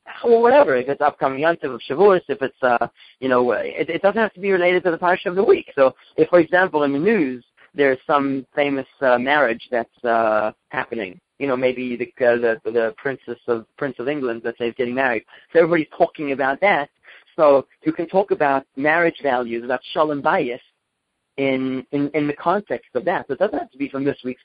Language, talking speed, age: English, 215 wpm, 30-49